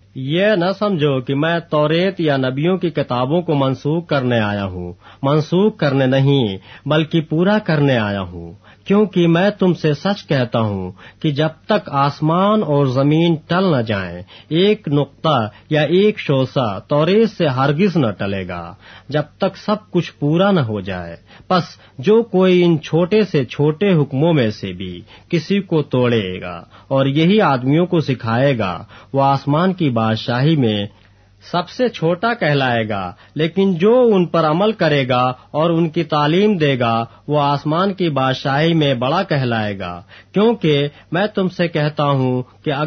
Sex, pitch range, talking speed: male, 115-170 Hz, 165 wpm